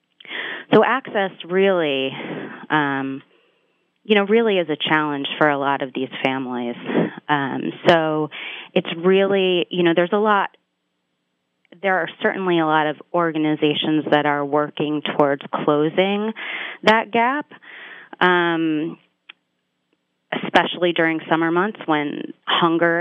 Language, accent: English, American